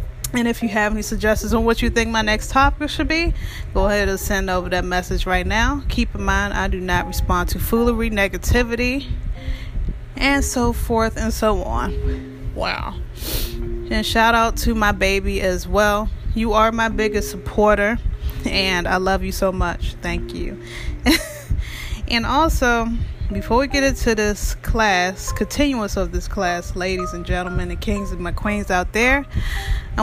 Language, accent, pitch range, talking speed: English, American, 190-235 Hz, 170 wpm